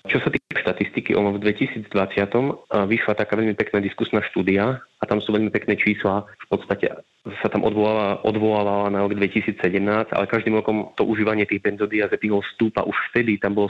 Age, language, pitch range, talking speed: 20-39, Slovak, 95-105 Hz, 165 wpm